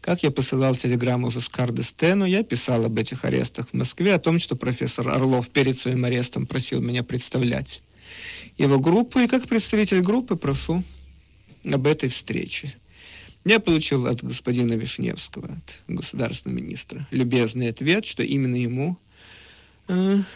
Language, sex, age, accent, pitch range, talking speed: Russian, male, 50-69, native, 125-190 Hz, 140 wpm